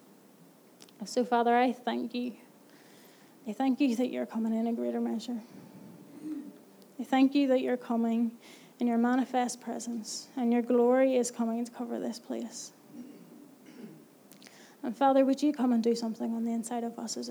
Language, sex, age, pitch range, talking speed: English, female, 30-49, 245-290 Hz, 165 wpm